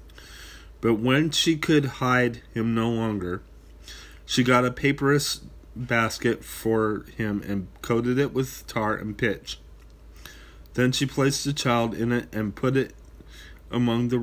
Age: 30-49